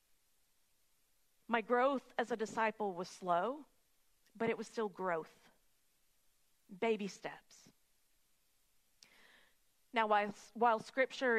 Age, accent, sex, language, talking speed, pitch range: 40-59, American, female, English, 95 wpm, 205-250 Hz